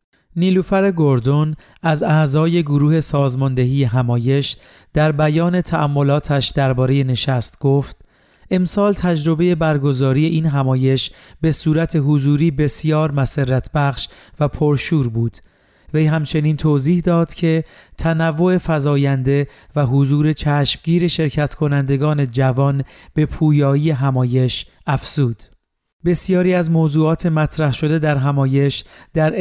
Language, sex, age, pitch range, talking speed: Persian, male, 40-59, 135-160 Hz, 105 wpm